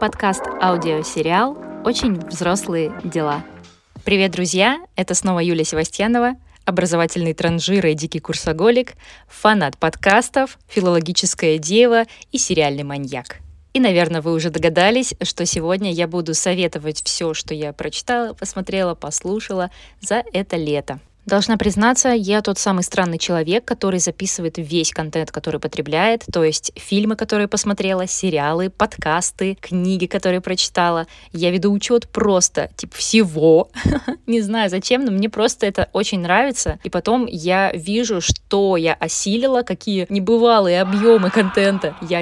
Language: Russian